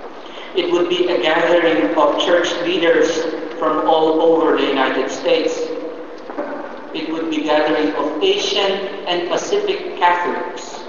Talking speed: 130 wpm